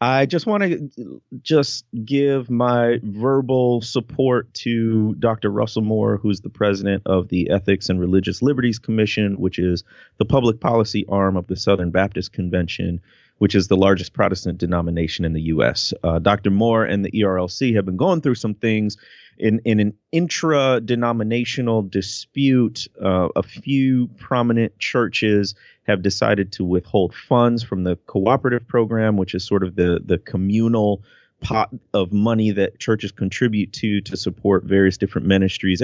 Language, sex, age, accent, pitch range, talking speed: English, male, 30-49, American, 95-120 Hz, 155 wpm